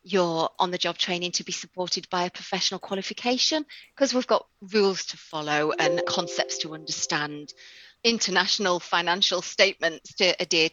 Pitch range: 170-205 Hz